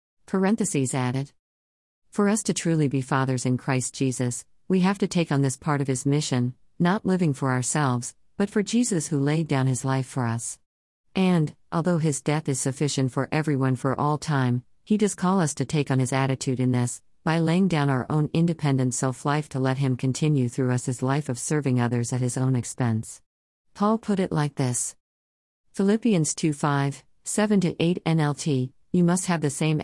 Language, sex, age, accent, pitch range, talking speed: English, female, 50-69, American, 130-165 Hz, 190 wpm